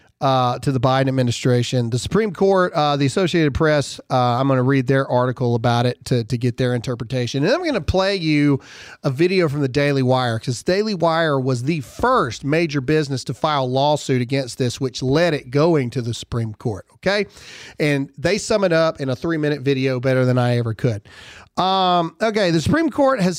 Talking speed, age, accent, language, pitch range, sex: 210 wpm, 40-59, American, English, 130-175 Hz, male